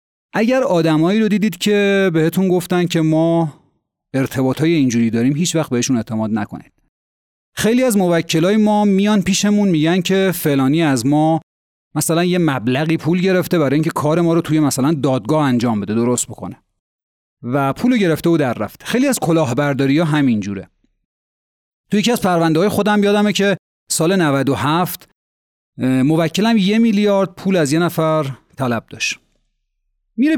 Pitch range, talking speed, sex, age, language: 130-180 Hz, 155 wpm, male, 40-59, Persian